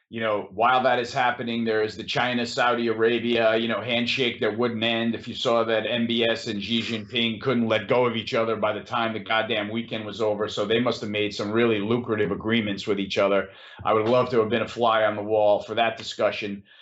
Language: English